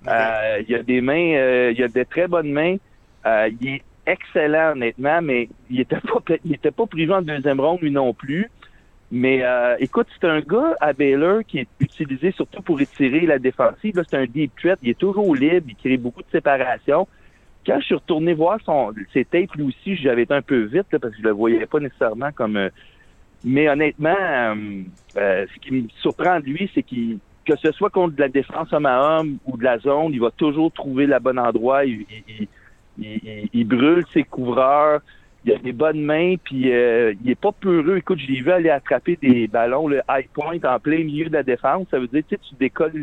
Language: French